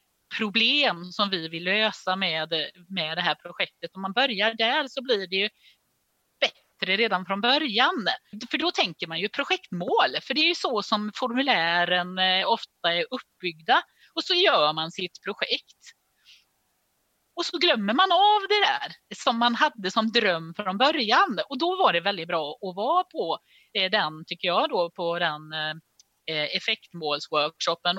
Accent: native